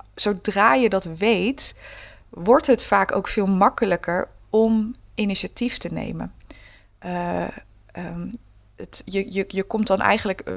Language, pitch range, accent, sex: Dutch, 180-220 Hz, Dutch, female